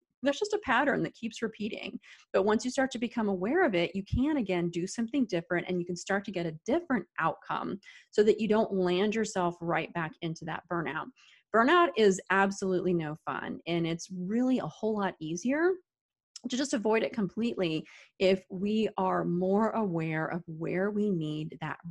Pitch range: 170-220 Hz